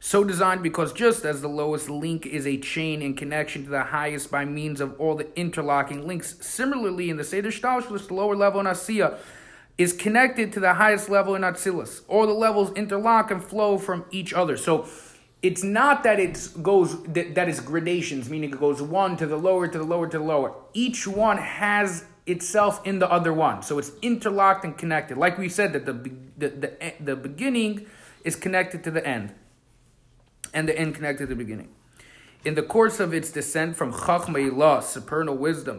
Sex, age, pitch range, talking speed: male, 30-49, 145-195 Hz, 195 wpm